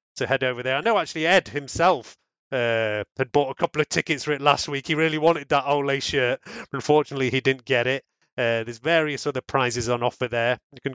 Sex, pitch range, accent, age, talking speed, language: male, 120-145 Hz, British, 30-49, 225 wpm, English